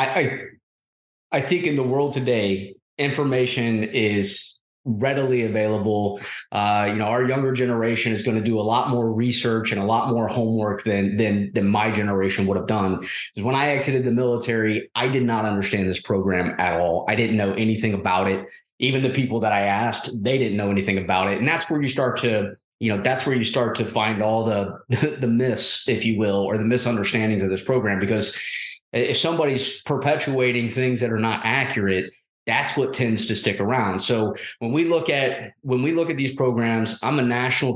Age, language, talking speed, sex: 20-39, English, 200 wpm, male